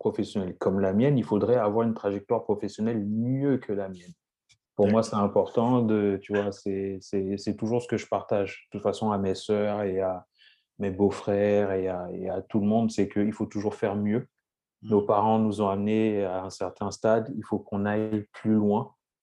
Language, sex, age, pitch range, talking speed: French, male, 30-49, 100-120 Hz, 210 wpm